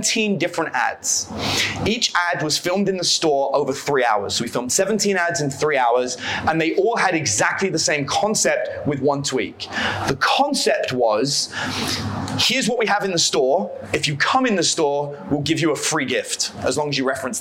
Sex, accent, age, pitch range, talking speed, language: male, British, 20-39, 140-190 Hz, 195 wpm, English